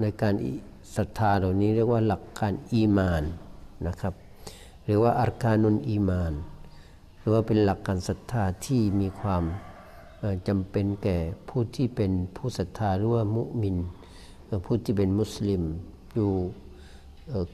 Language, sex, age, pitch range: Thai, male, 60-79, 90-110 Hz